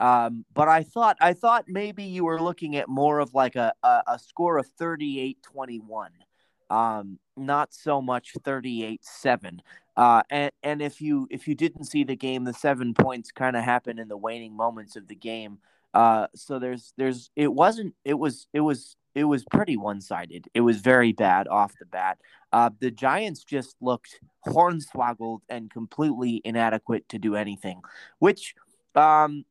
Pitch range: 115-150 Hz